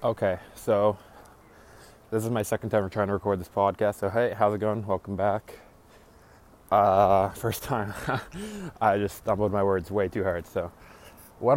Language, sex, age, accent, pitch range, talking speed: English, male, 20-39, American, 100-125 Hz, 165 wpm